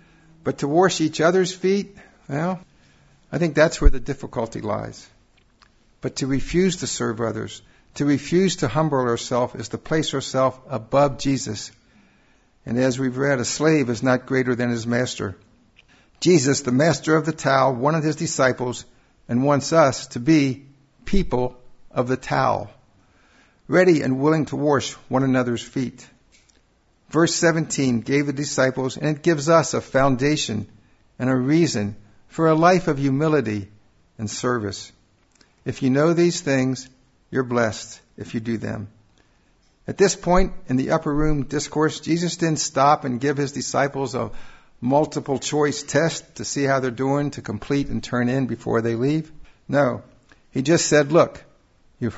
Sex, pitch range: male, 120-155 Hz